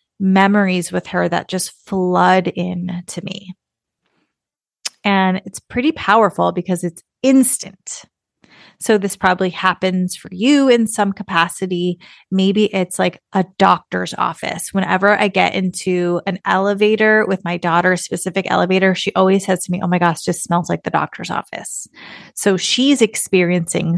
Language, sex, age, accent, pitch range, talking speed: English, female, 30-49, American, 180-210 Hz, 155 wpm